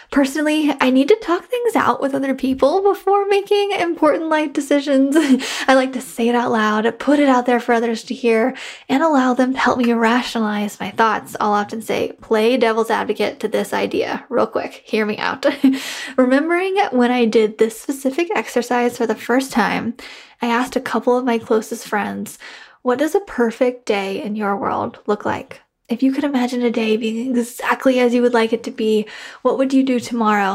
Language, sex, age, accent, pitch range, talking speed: English, female, 10-29, American, 225-265 Hz, 200 wpm